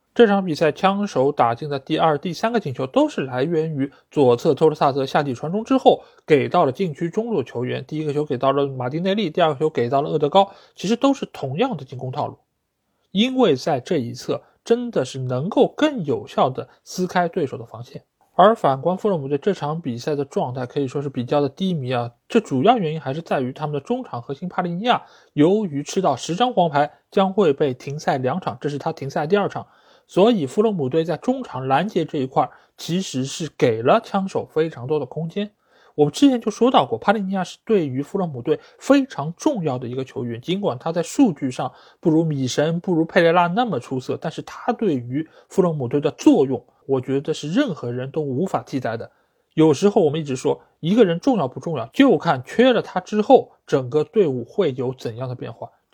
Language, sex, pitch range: Chinese, male, 140-200 Hz